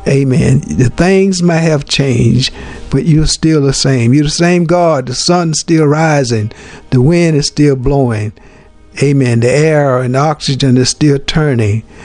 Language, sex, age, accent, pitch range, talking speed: English, male, 60-79, American, 125-165 Hz, 160 wpm